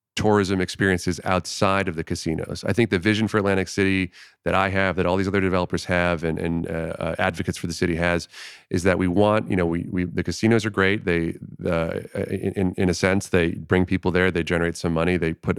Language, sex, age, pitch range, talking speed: English, male, 30-49, 85-95 Hz, 225 wpm